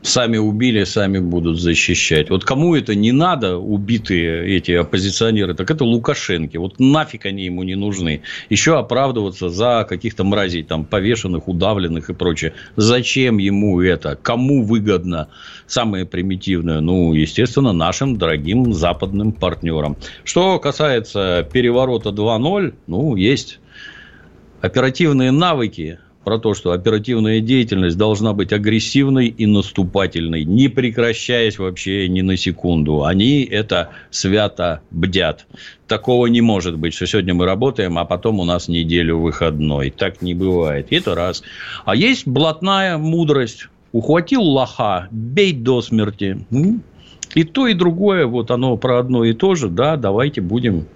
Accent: native